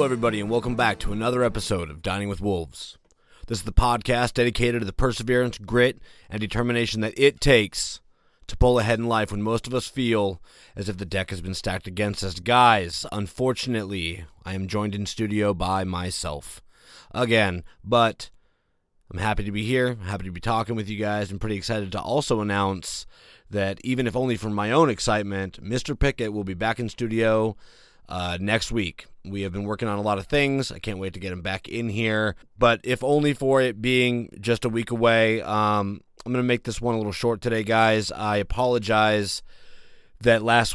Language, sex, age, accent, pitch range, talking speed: English, male, 30-49, American, 100-120 Hz, 200 wpm